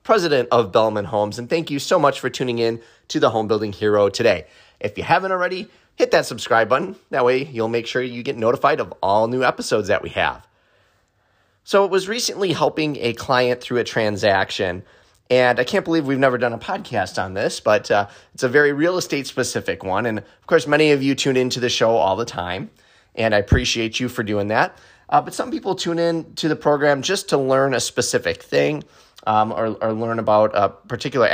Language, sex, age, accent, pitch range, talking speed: English, male, 30-49, American, 110-140 Hz, 215 wpm